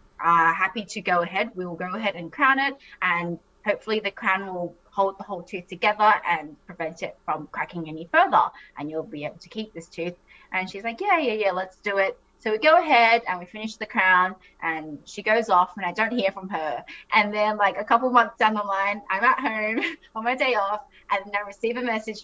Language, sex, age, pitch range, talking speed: English, female, 20-39, 195-265 Hz, 235 wpm